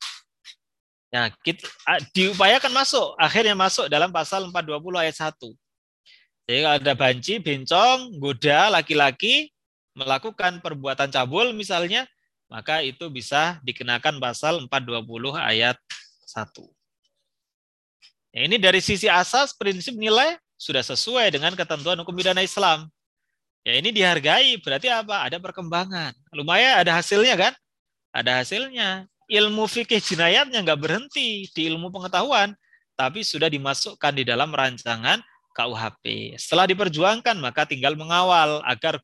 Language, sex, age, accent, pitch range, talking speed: Indonesian, male, 30-49, native, 140-200 Hz, 120 wpm